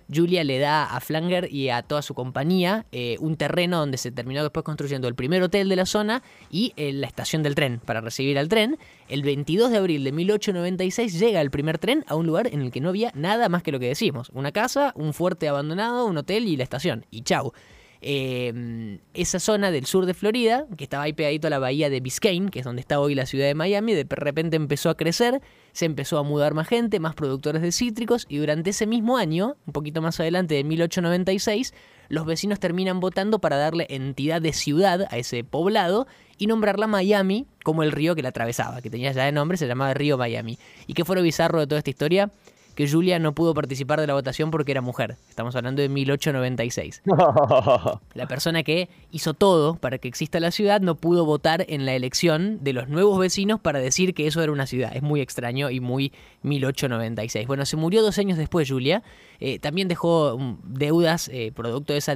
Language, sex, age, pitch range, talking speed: Spanish, male, 20-39, 135-185 Hz, 215 wpm